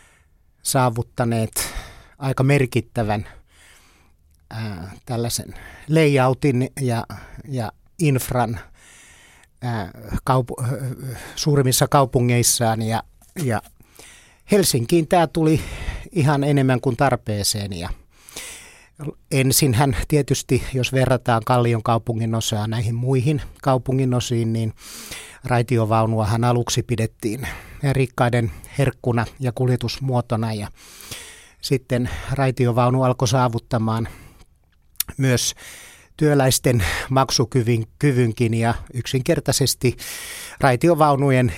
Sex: male